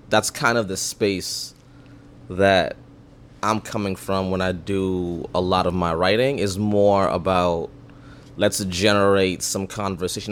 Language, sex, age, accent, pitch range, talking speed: English, male, 20-39, American, 95-125 Hz, 140 wpm